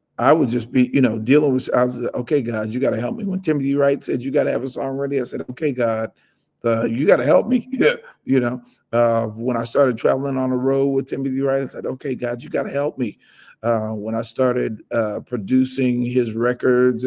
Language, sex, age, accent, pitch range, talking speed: English, male, 50-69, American, 115-130 Hz, 230 wpm